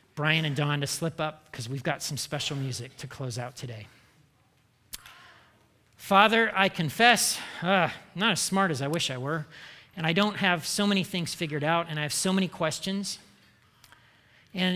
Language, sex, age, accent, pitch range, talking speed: English, male, 40-59, American, 140-185 Hz, 185 wpm